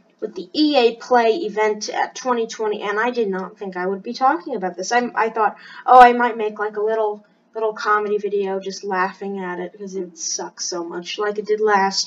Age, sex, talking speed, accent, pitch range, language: 10-29, female, 220 wpm, American, 205-245 Hz, English